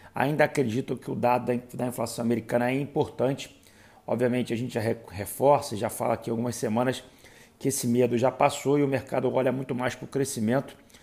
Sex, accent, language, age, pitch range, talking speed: male, Brazilian, Portuguese, 40-59, 115-135 Hz, 185 wpm